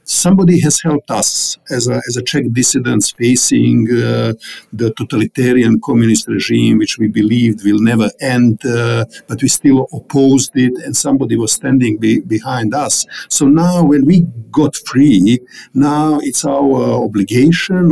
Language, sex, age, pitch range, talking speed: English, male, 50-69, 120-150 Hz, 150 wpm